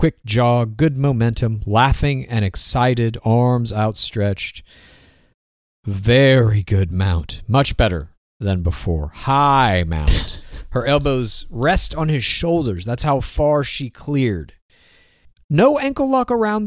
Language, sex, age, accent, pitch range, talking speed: English, male, 40-59, American, 105-155 Hz, 120 wpm